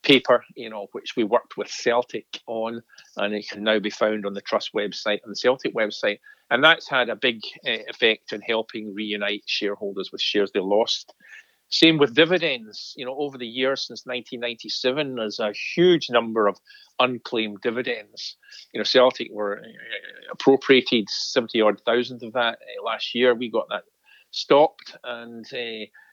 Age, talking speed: 40-59, 170 wpm